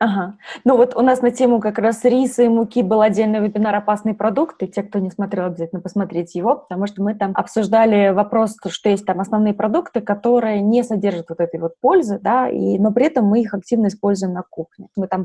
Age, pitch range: 20-39, 200-245 Hz